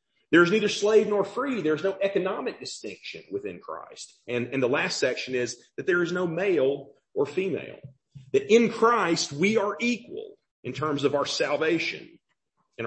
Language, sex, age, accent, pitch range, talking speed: English, male, 40-59, American, 145-215 Hz, 170 wpm